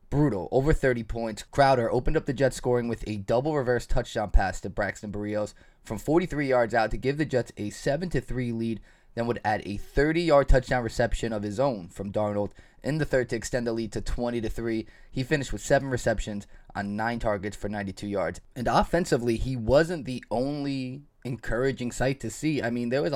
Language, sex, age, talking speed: English, male, 20-39, 195 wpm